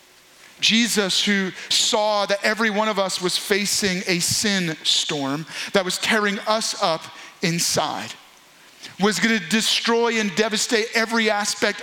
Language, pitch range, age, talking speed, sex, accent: English, 200-245 Hz, 40-59, 130 wpm, male, American